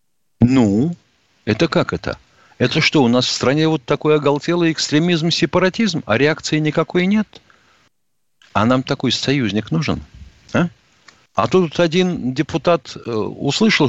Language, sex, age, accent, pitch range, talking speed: Russian, male, 50-69, native, 105-155 Hz, 130 wpm